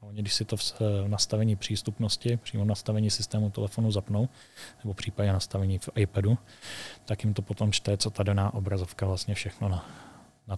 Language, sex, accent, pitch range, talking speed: Czech, male, native, 100-110 Hz, 175 wpm